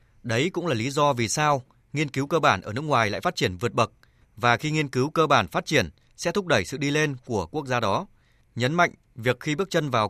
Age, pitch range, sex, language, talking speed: 20-39, 115-140 Hz, male, Vietnamese, 260 wpm